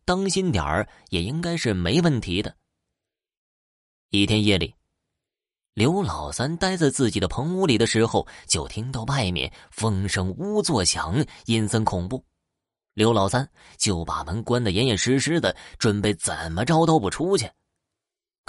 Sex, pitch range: male, 100-165 Hz